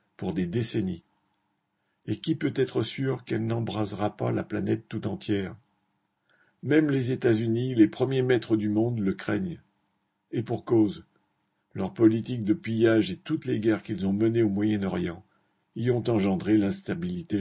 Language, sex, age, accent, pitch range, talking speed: French, male, 60-79, French, 105-115 Hz, 155 wpm